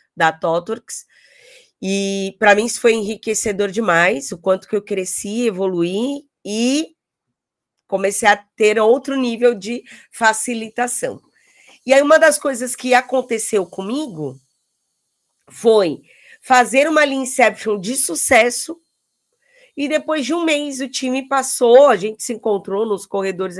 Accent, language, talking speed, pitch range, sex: Brazilian, Portuguese, 130 wpm, 200-255 Hz, female